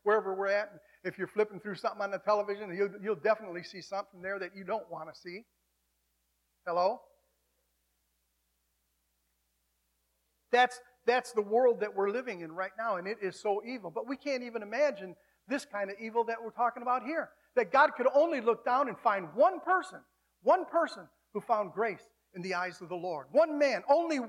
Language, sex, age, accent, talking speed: English, male, 50-69, American, 190 wpm